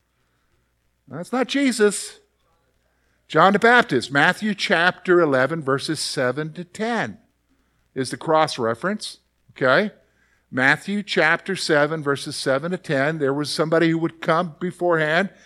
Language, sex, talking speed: English, male, 125 wpm